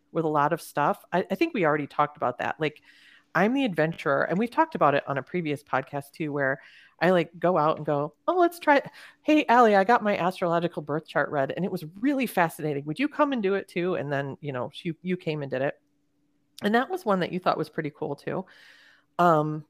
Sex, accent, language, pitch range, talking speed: female, American, English, 150-190 Hz, 245 wpm